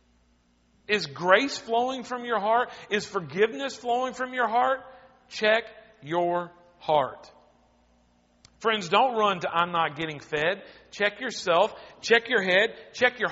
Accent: American